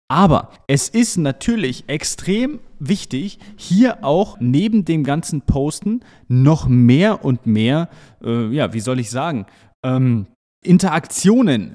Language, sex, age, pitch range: German, male, 30-49, 125-175 Hz